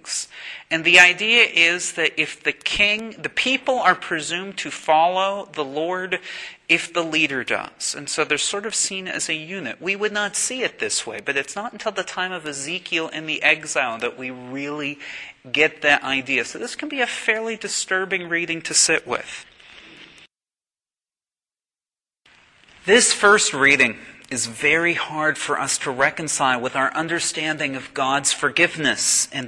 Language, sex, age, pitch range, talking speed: English, male, 40-59, 145-195 Hz, 165 wpm